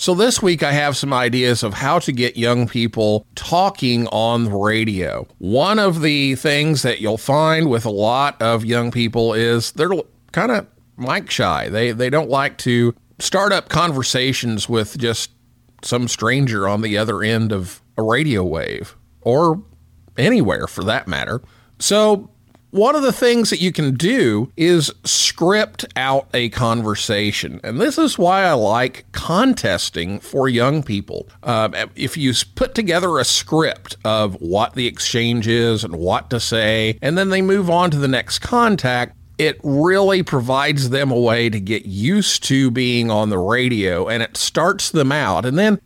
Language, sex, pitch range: English, male, 110-155 Hz